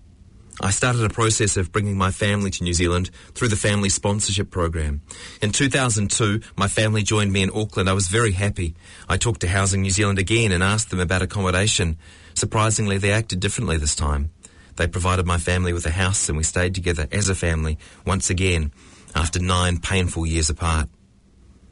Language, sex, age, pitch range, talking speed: English, male, 30-49, 85-100 Hz, 185 wpm